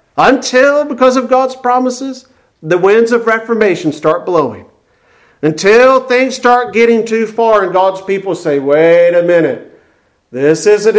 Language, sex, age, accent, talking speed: English, male, 50-69, American, 140 wpm